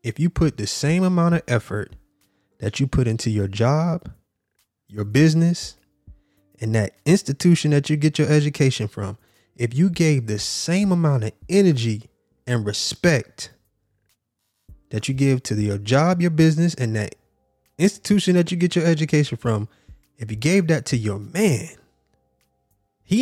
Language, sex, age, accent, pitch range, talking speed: English, male, 20-39, American, 105-155 Hz, 155 wpm